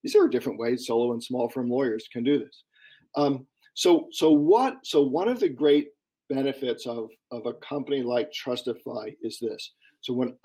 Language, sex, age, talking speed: English, male, 50-69, 170 wpm